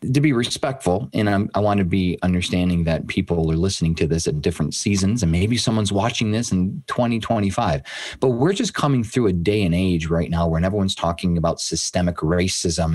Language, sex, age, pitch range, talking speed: English, male, 30-49, 90-120 Hz, 195 wpm